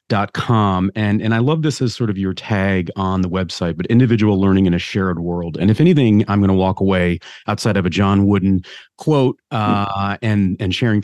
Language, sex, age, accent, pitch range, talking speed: English, male, 40-59, American, 95-115 Hz, 210 wpm